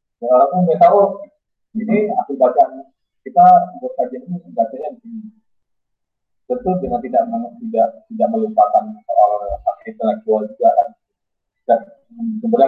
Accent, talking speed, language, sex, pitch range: native, 120 wpm, Indonesian, male, 145-235 Hz